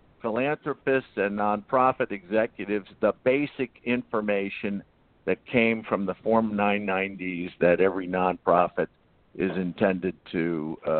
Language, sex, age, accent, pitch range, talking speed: English, male, 60-79, American, 105-145 Hz, 110 wpm